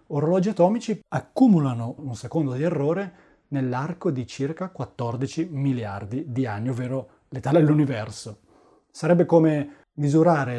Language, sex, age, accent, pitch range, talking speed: Italian, male, 30-49, native, 130-180 Hz, 115 wpm